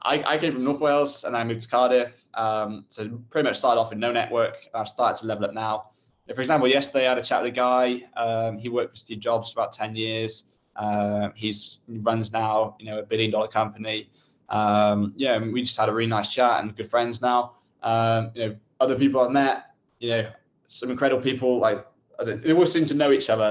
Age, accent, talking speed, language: 20-39, British, 230 wpm, English